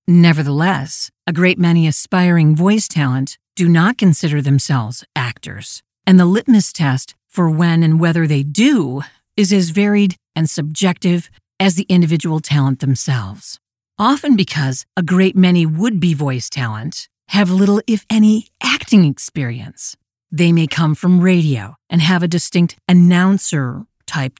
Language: English